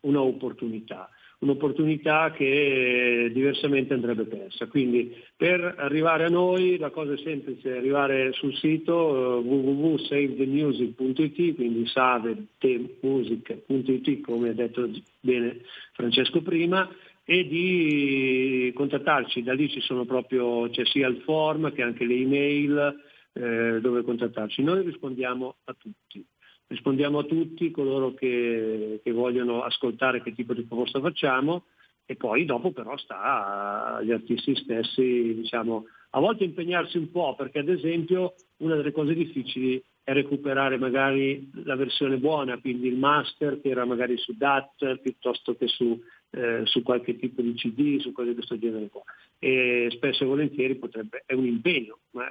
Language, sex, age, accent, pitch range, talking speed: Italian, male, 50-69, native, 120-145 Hz, 145 wpm